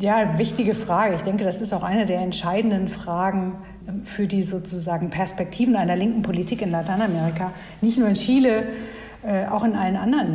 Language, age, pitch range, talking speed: German, 60-79, 195-225 Hz, 170 wpm